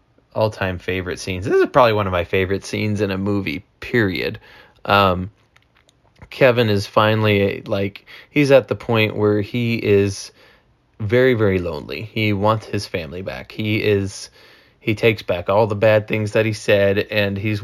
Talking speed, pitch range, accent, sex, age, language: 165 wpm, 100-110 Hz, American, male, 20-39, English